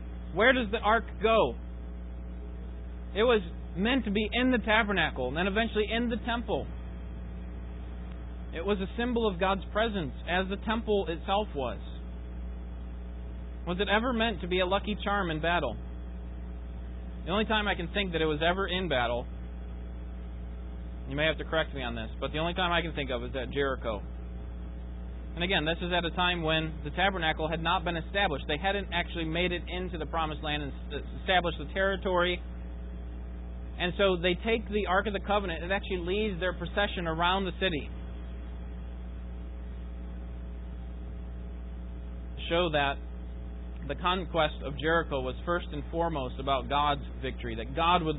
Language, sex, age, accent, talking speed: English, male, 30-49, American, 165 wpm